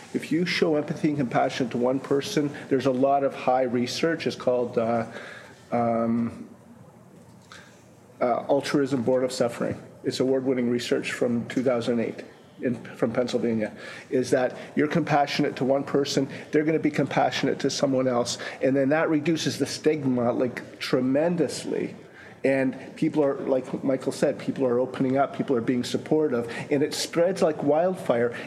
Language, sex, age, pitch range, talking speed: English, male, 40-59, 130-145 Hz, 155 wpm